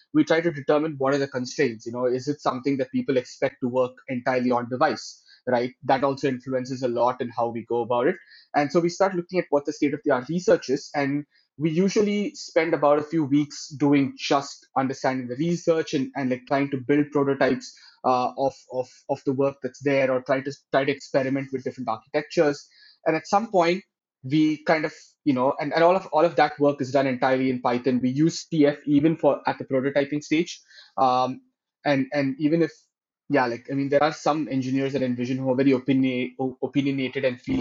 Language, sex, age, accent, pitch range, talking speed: English, male, 20-39, Indian, 130-150 Hz, 215 wpm